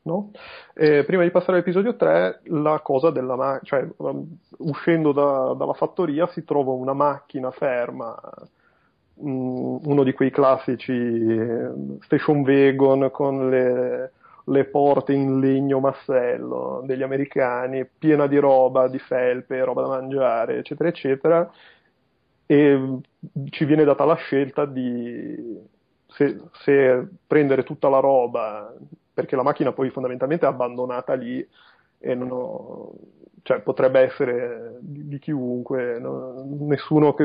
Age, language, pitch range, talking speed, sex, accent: 30-49, Italian, 130-150 Hz, 120 wpm, male, native